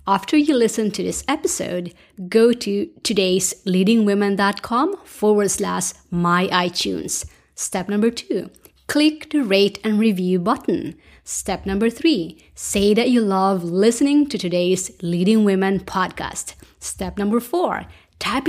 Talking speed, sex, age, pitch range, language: 125 wpm, female, 30-49, 190-255 Hz, English